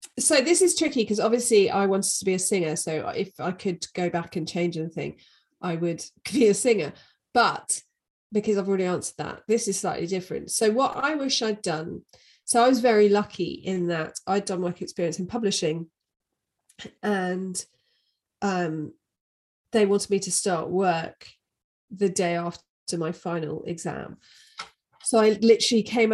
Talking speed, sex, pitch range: 170 wpm, female, 175-210 Hz